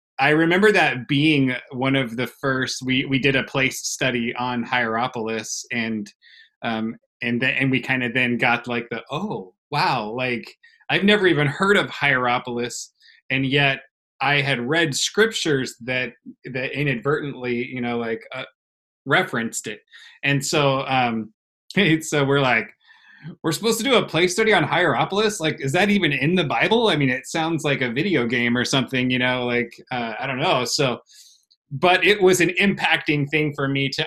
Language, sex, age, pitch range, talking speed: English, male, 20-39, 125-155 Hz, 175 wpm